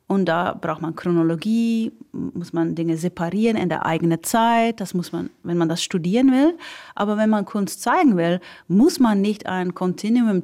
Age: 40-59